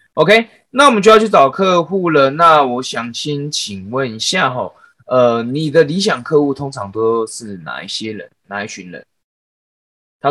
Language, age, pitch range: Chinese, 20-39, 100-160 Hz